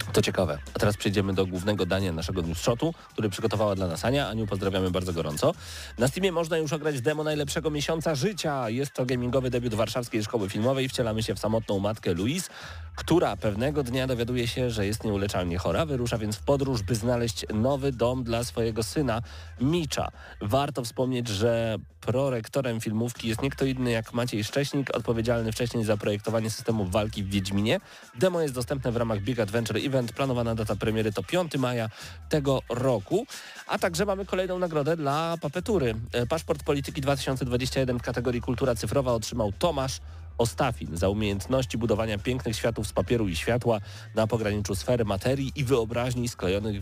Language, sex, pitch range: Polish, male, 100-130 Hz